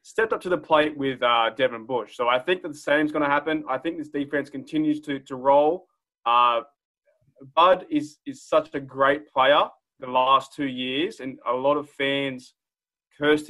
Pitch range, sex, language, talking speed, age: 135-155 Hz, male, English, 200 wpm, 20-39